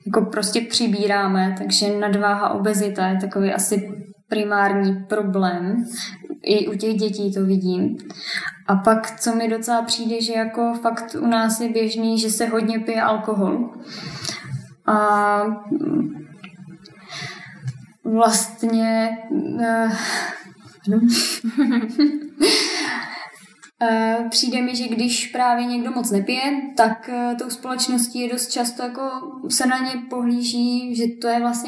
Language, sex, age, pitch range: Czech, female, 20-39, 205-235 Hz